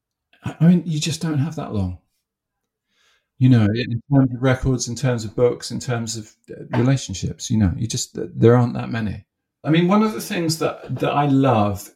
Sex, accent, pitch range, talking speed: male, British, 105-130 Hz, 200 wpm